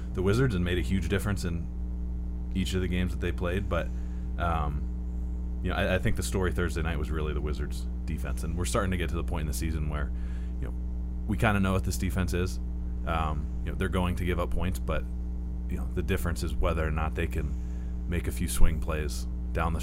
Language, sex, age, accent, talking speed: English, male, 20-39, American, 240 wpm